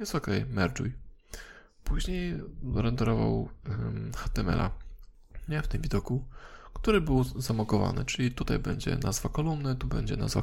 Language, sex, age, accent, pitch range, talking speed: Polish, male, 20-39, native, 115-135 Hz, 125 wpm